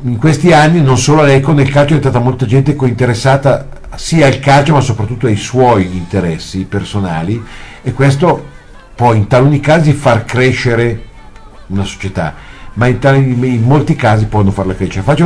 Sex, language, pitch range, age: male, Italian, 100-135 Hz, 50-69